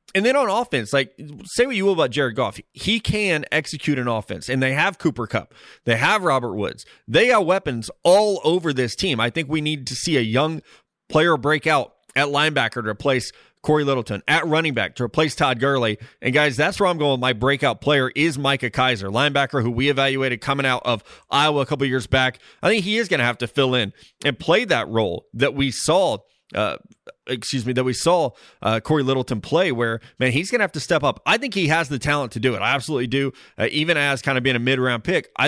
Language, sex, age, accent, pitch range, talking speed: English, male, 30-49, American, 125-155 Hz, 235 wpm